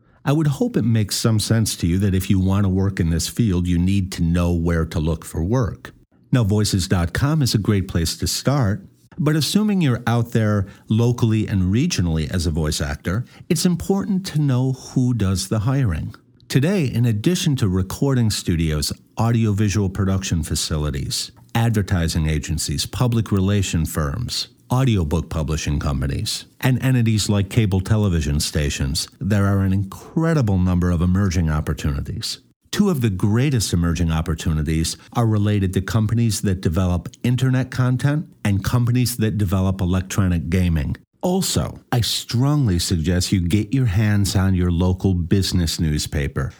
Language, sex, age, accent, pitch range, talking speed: English, male, 50-69, American, 90-125 Hz, 155 wpm